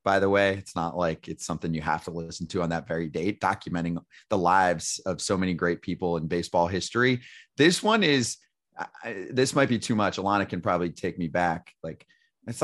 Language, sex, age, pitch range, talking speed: English, male, 30-49, 85-105 Hz, 215 wpm